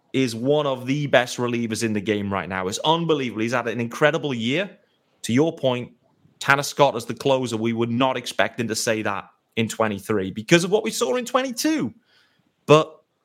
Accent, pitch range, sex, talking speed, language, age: British, 115-155 Hz, male, 200 wpm, English, 30-49